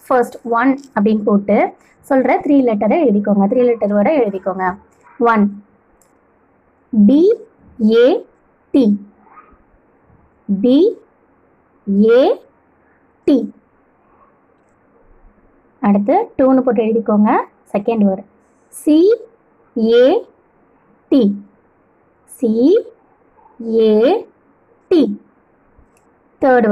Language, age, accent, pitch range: Tamil, 20-39, native, 210-295 Hz